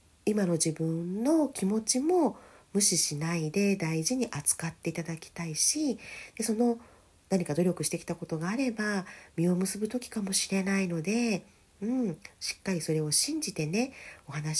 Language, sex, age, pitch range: Japanese, female, 40-59, 150-240 Hz